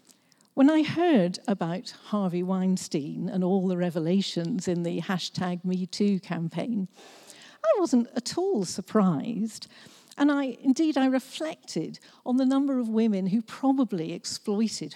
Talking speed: 130 wpm